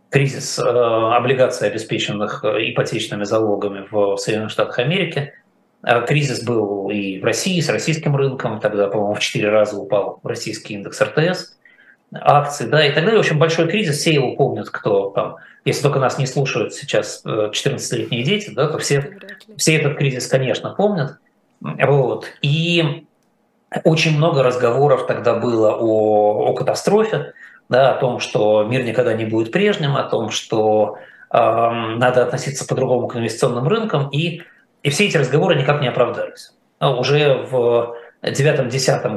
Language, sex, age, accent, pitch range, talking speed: Russian, male, 20-39, native, 115-155 Hz, 150 wpm